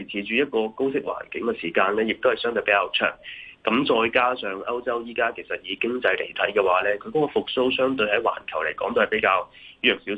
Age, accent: 30-49, native